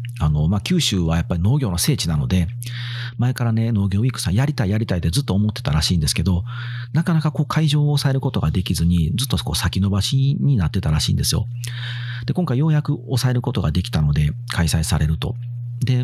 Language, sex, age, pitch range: Japanese, male, 40-59, 90-125 Hz